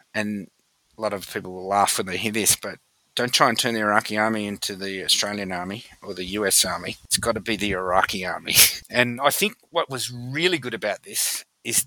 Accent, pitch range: Australian, 105-130 Hz